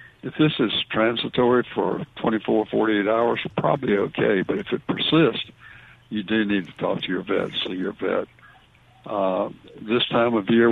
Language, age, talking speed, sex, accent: English, 60-79, 170 wpm, male, American